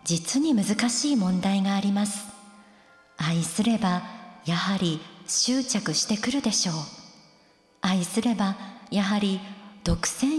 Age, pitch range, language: 50-69, 175-230 Hz, Japanese